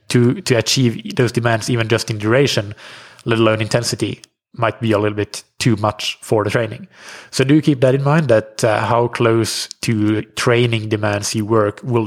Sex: male